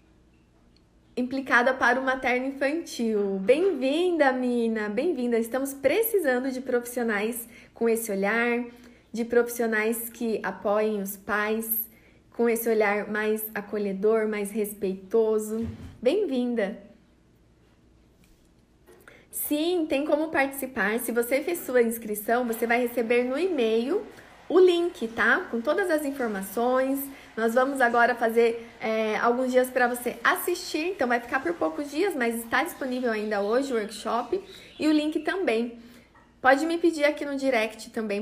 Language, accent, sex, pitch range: Portuguese, Brazilian, female, 220-265 Hz